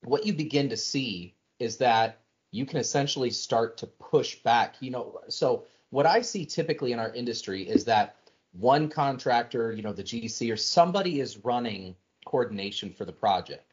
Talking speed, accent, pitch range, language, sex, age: 175 wpm, American, 105-140 Hz, English, male, 30-49